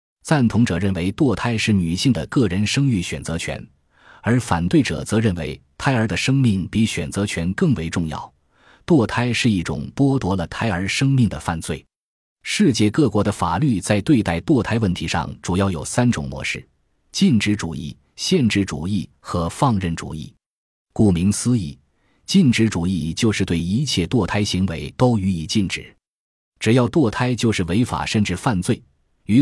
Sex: male